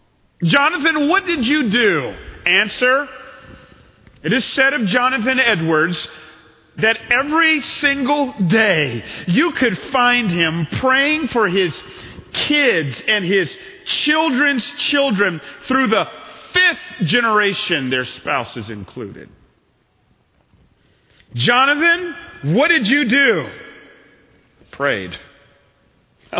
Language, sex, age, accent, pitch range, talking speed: English, male, 40-59, American, 155-255 Hz, 95 wpm